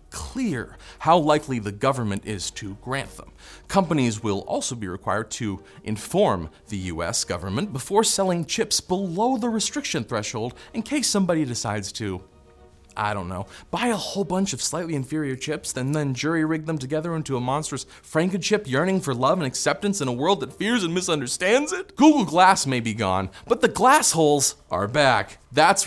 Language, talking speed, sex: English, 175 wpm, male